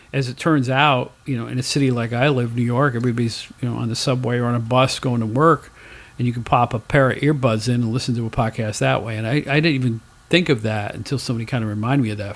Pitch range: 120-150 Hz